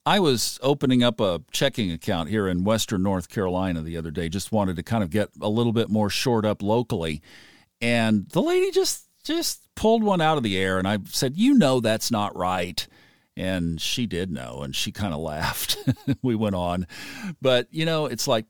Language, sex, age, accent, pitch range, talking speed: English, male, 50-69, American, 100-135 Hz, 210 wpm